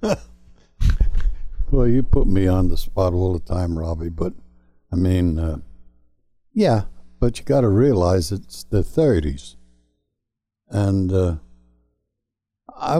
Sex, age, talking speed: male, 60-79, 125 wpm